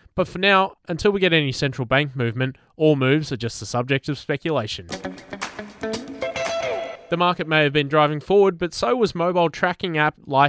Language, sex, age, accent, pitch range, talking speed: English, male, 20-39, Australian, 130-175 Hz, 185 wpm